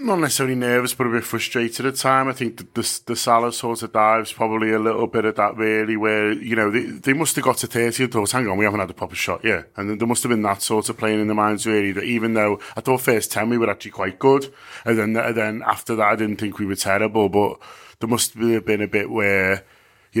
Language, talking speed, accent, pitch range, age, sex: English, 280 wpm, British, 100-115 Hz, 20-39, male